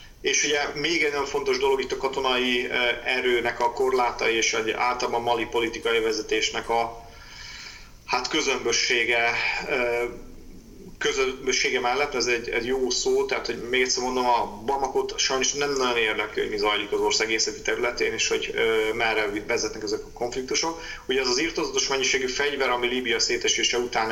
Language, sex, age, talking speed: Hungarian, male, 30-49, 150 wpm